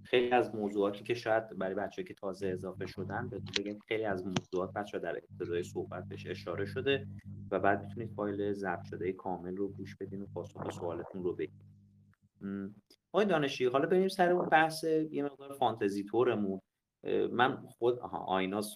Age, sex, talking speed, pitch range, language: 30-49, male, 160 wpm, 95-135 Hz, Persian